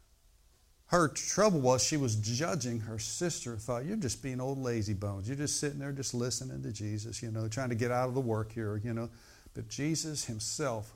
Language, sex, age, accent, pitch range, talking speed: English, male, 60-79, American, 105-140 Hz, 210 wpm